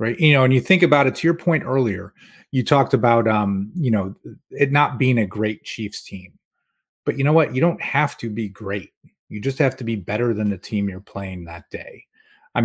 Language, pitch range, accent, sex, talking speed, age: English, 100-125 Hz, American, male, 235 wpm, 30-49